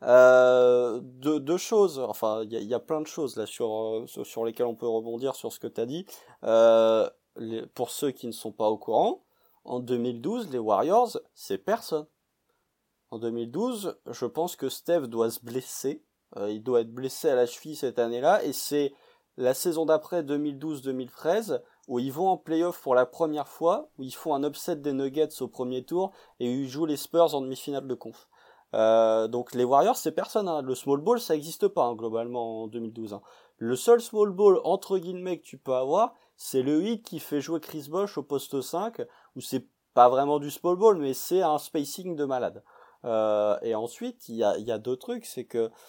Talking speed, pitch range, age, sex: 210 wpm, 120-165 Hz, 30-49, male